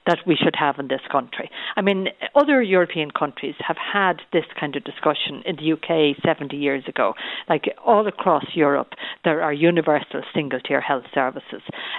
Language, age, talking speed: English, 50-69, 175 wpm